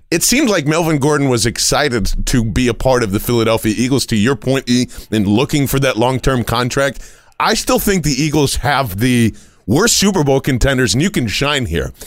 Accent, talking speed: American, 205 wpm